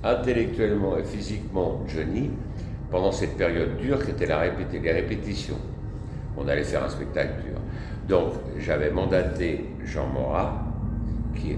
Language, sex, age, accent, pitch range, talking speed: French, male, 60-79, French, 75-105 Hz, 135 wpm